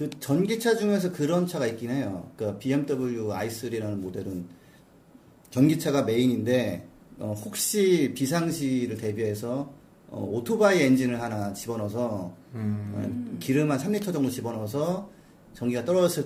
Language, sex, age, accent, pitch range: Korean, male, 40-59, native, 110-150 Hz